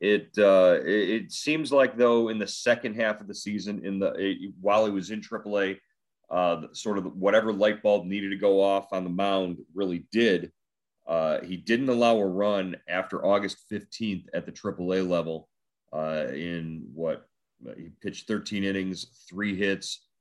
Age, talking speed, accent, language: 30-49, 170 wpm, American, English